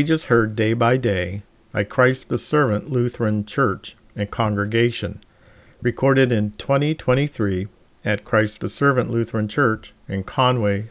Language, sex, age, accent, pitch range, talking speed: English, male, 50-69, American, 105-125 Hz, 130 wpm